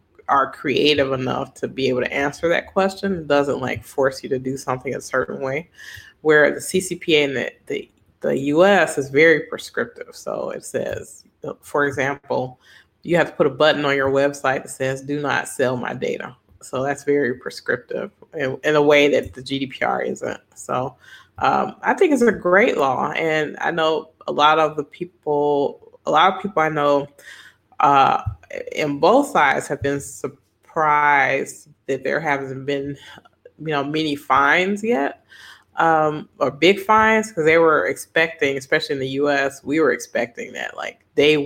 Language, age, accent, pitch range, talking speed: Swedish, 20-39, American, 135-155 Hz, 175 wpm